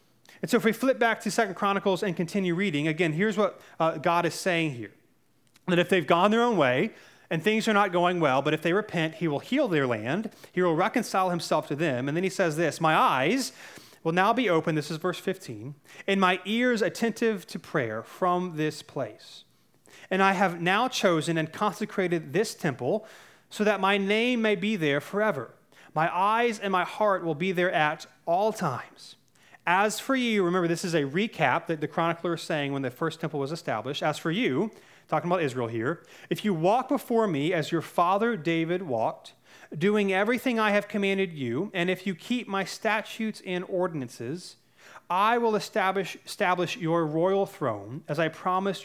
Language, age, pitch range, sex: English, 30-49, 160-200 Hz, male